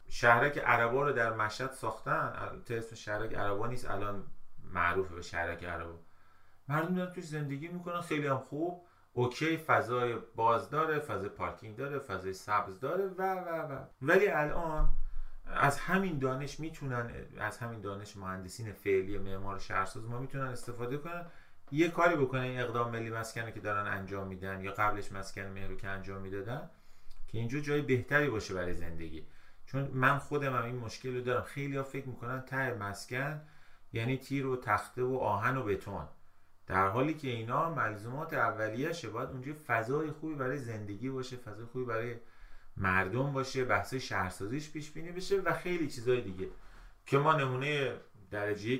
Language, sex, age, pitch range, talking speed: Persian, male, 30-49, 100-140 Hz, 160 wpm